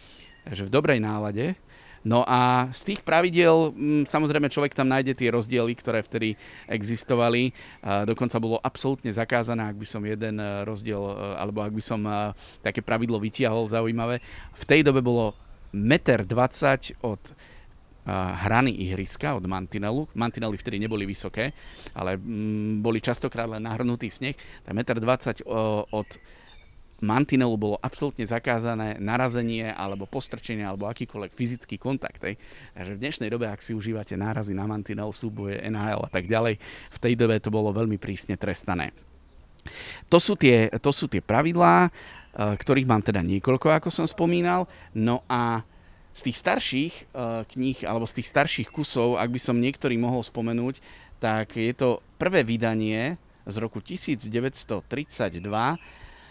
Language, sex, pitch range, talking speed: Slovak, male, 105-125 Hz, 140 wpm